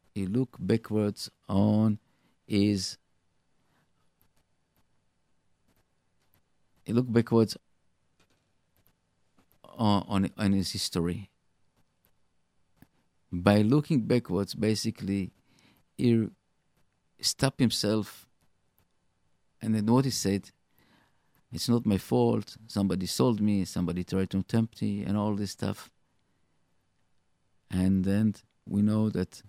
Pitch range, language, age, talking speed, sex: 95-115 Hz, English, 50-69, 90 wpm, male